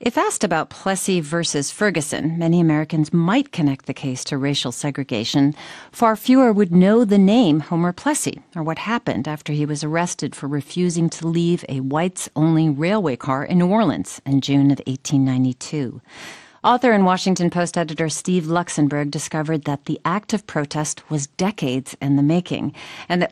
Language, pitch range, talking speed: English, 145-185 Hz, 165 wpm